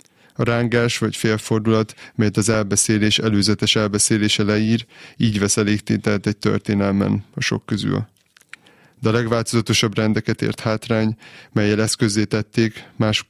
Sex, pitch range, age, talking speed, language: male, 105-115 Hz, 20-39, 125 wpm, Hungarian